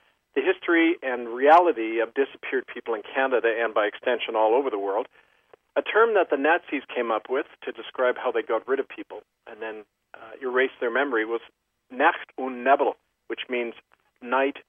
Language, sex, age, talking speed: English, male, 50-69, 185 wpm